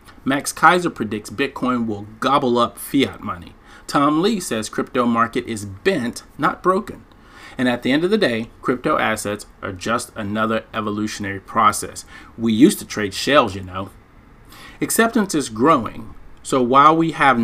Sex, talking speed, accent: male, 160 wpm, American